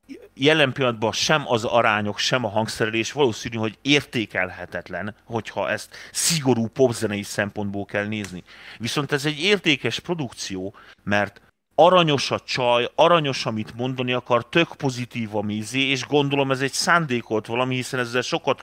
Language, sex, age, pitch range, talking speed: Hungarian, male, 30-49, 110-150 Hz, 140 wpm